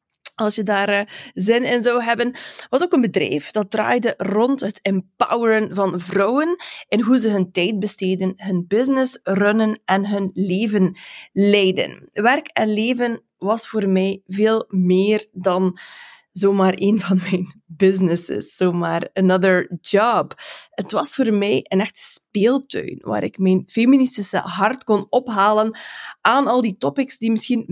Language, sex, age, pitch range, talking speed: Dutch, female, 20-39, 190-230 Hz, 150 wpm